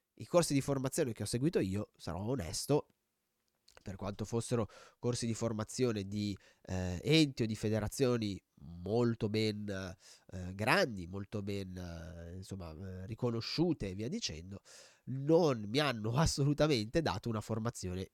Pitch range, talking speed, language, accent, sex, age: 100-125 Hz, 135 wpm, Italian, native, male, 20-39